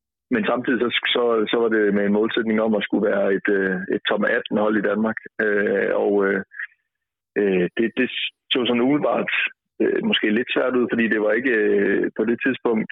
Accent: native